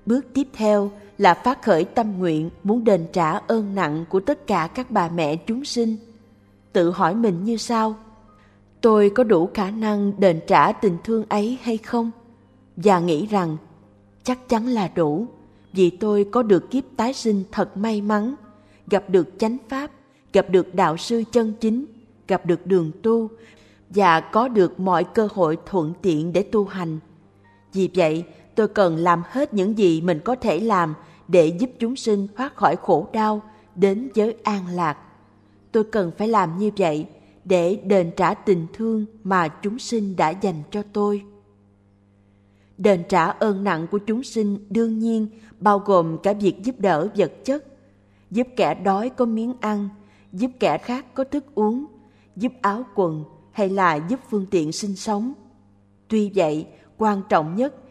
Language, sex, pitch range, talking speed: Vietnamese, female, 170-225 Hz, 170 wpm